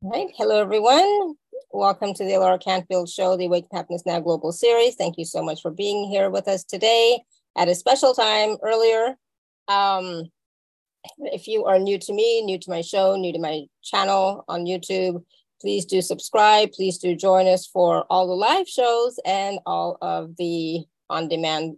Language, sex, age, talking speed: English, female, 30-49, 180 wpm